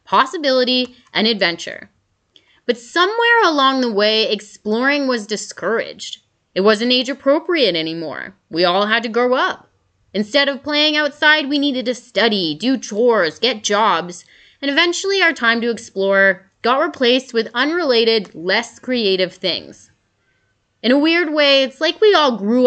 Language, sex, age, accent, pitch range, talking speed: English, female, 20-39, American, 200-270 Hz, 145 wpm